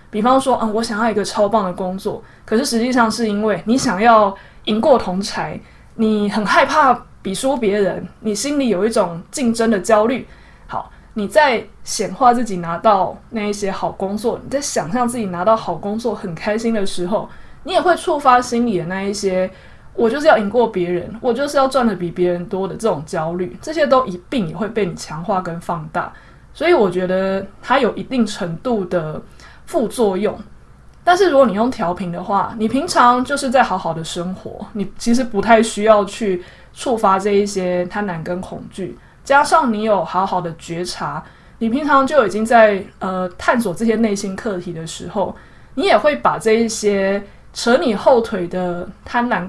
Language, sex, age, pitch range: Chinese, female, 20-39, 185-235 Hz